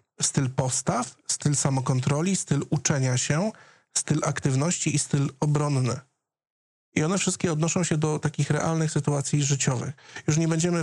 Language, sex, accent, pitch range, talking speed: Polish, male, native, 130-155 Hz, 140 wpm